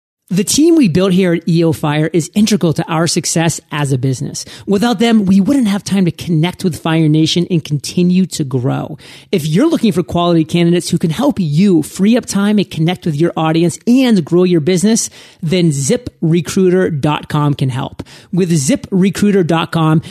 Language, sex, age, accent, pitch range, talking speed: English, male, 30-49, American, 165-205 Hz, 175 wpm